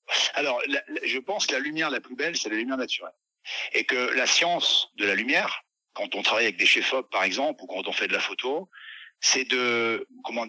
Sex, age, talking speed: male, 50-69, 225 wpm